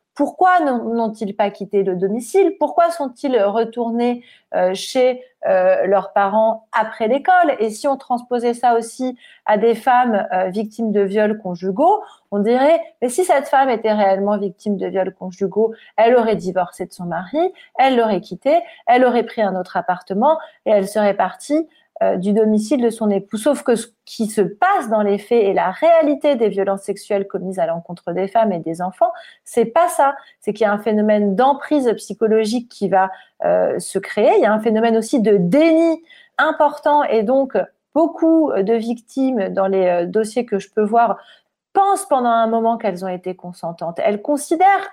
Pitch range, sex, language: 200-285 Hz, female, French